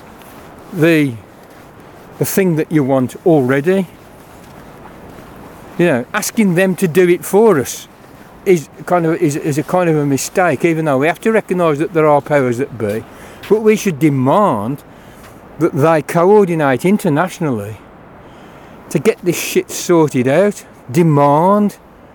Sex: male